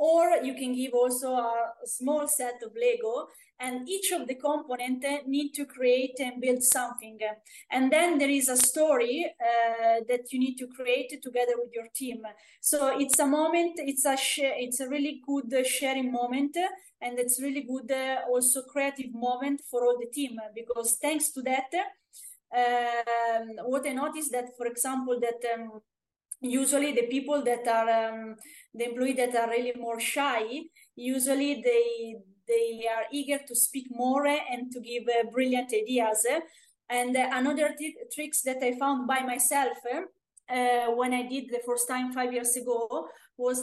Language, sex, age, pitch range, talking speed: English, female, 20-39, 240-280 Hz, 170 wpm